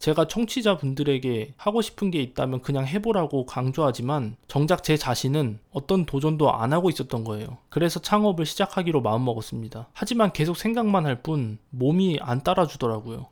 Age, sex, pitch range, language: 20-39, male, 130-185 Hz, Korean